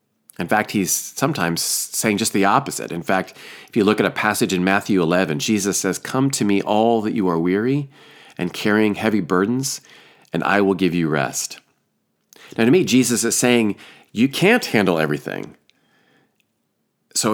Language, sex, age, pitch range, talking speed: English, male, 40-59, 90-120 Hz, 175 wpm